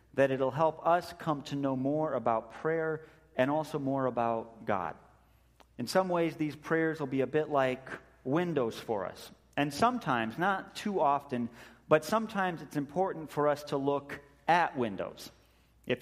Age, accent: 30-49, American